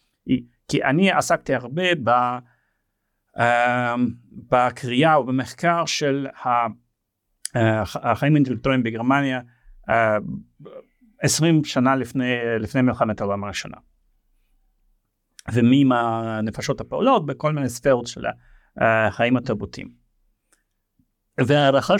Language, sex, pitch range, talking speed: Hebrew, male, 110-135 Hz, 75 wpm